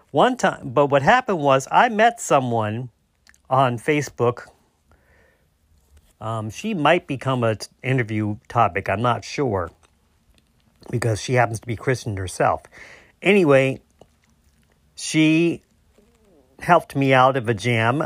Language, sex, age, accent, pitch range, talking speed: English, male, 40-59, American, 115-165 Hz, 120 wpm